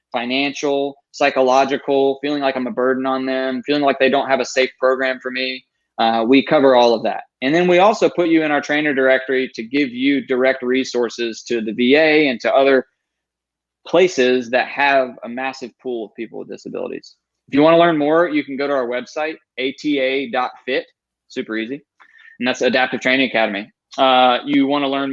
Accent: American